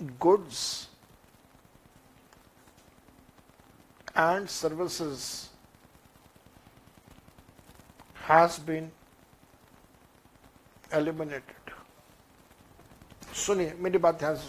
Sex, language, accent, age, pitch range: male, Hindi, native, 60-79, 155-190 Hz